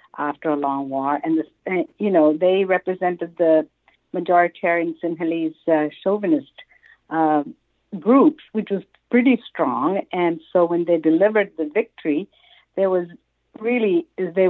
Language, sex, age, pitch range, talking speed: English, female, 60-79, 165-220 Hz, 130 wpm